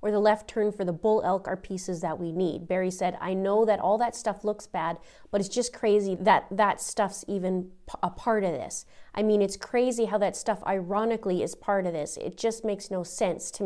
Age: 30-49